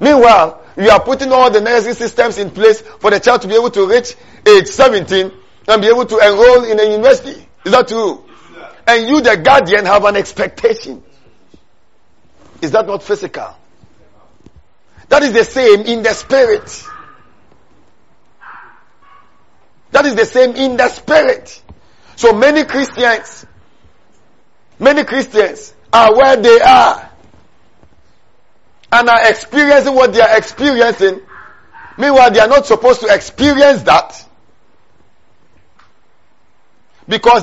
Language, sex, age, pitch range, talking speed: English, male, 50-69, 220-280 Hz, 130 wpm